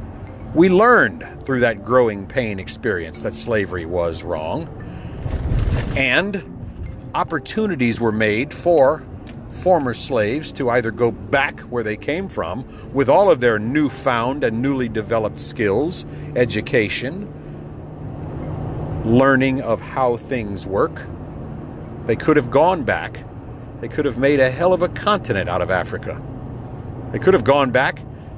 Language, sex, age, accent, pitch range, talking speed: English, male, 50-69, American, 105-135 Hz, 135 wpm